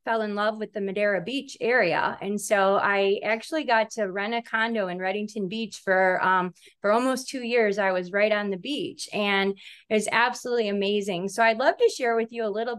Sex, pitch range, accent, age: female, 200-235 Hz, American, 20-39